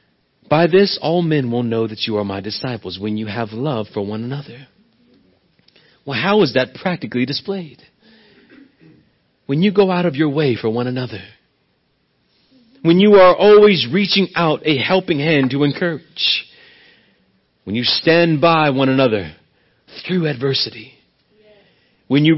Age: 40-59